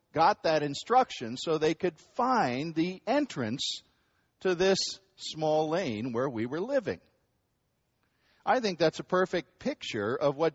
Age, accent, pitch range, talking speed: 50-69, American, 150-190 Hz, 140 wpm